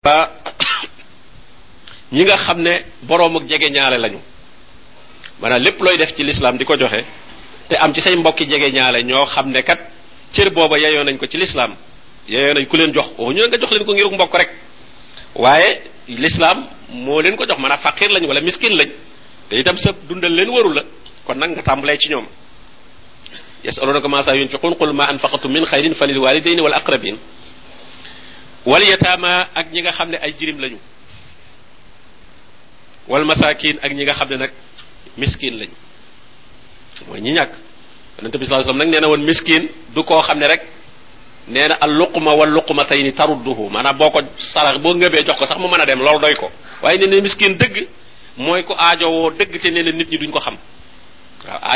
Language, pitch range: French, 140-175 Hz